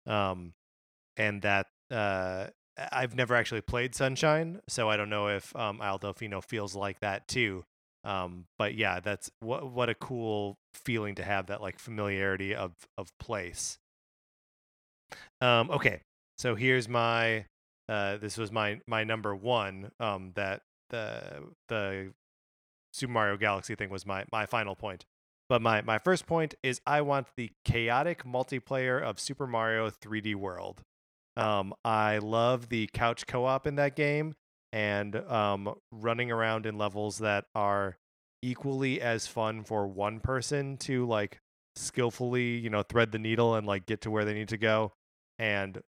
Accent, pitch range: American, 100-120 Hz